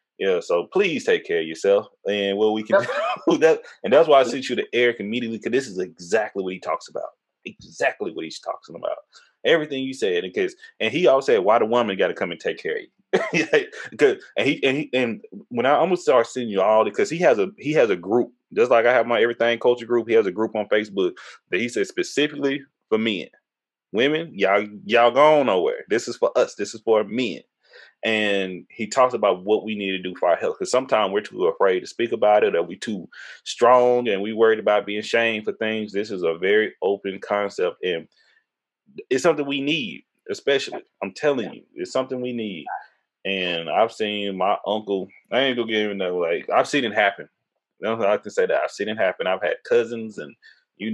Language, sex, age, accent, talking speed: English, male, 30-49, American, 225 wpm